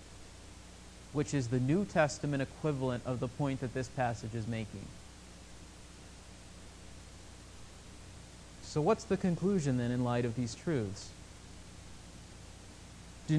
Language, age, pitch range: English, 30-49, 115-165 Hz